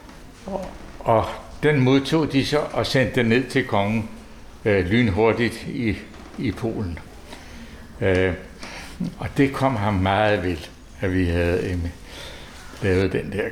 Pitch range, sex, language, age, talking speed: 95-120 Hz, male, Danish, 60-79, 135 wpm